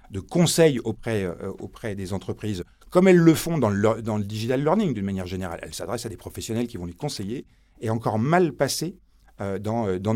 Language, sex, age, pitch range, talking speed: French, male, 40-59, 95-130 Hz, 215 wpm